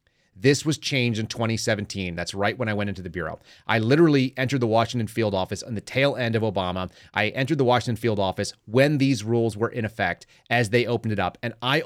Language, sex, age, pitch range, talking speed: English, male, 30-49, 105-130 Hz, 230 wpm